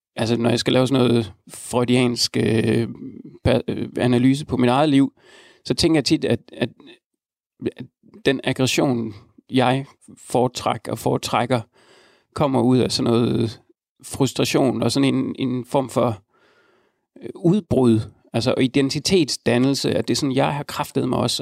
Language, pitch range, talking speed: Danish, 120-140 Hz, 145 wpm